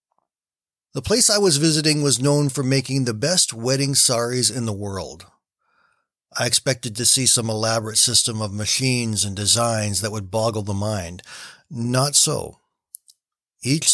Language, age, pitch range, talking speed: English, 40-59, 110-135 Hz, 150 wpm